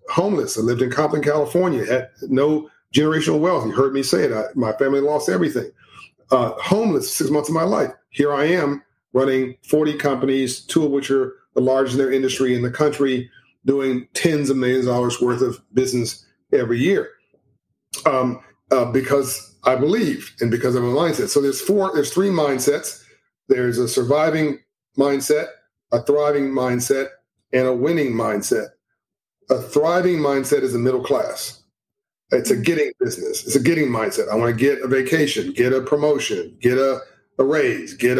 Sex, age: male, 40-59